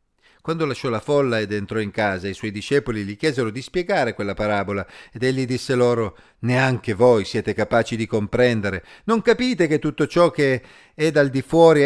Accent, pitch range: native, 110-155 Hz